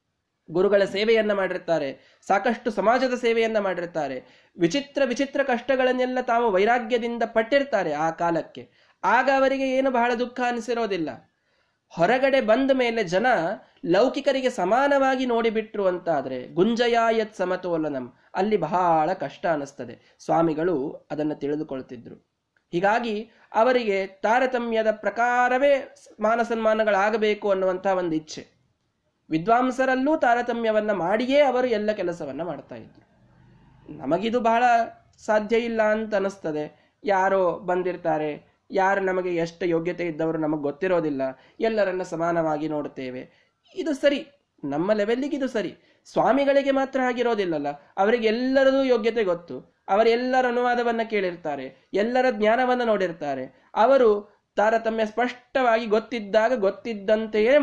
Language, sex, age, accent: Kannada, male, 20-39, native